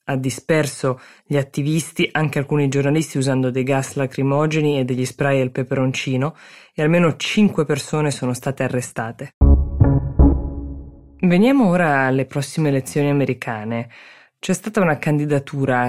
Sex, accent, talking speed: female, native, 125 wpm